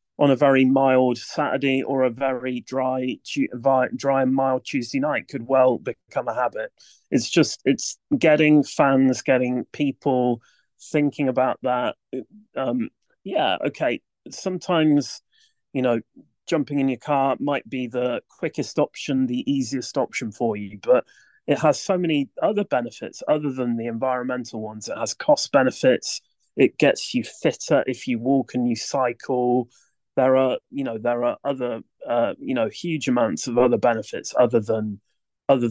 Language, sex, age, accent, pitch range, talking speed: English, male, 30-49, British, 125-150 Hz, 155 wpm